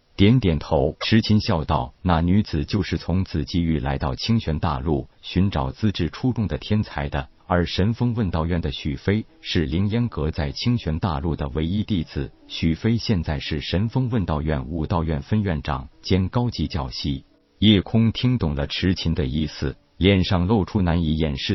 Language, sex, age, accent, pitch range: Chinese, male, 50-69, native, 75-105 Hz